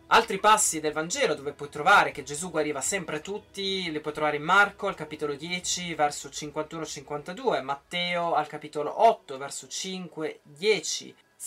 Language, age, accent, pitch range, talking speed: Italian, 20-39, native, 145-190 Hz, 145 wpm